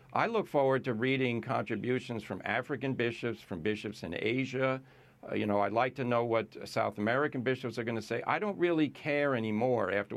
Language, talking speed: English, 200 wpm